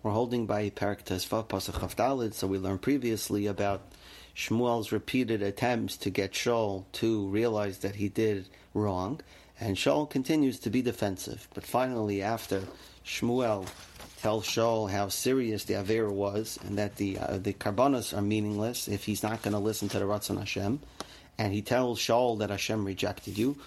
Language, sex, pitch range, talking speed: English, male, 100-125 Hz, 160 wpm